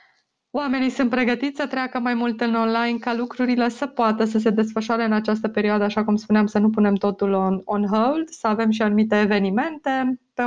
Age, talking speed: 20-39, 195 wpm